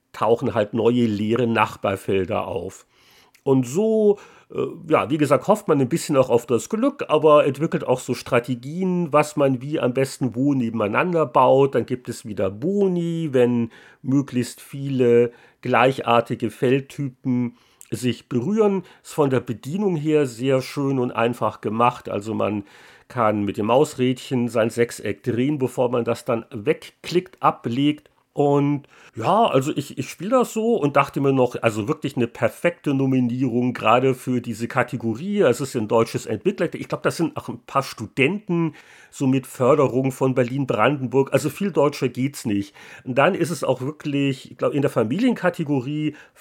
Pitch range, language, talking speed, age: 120-155 Hz, German, 160 wpm, 50-69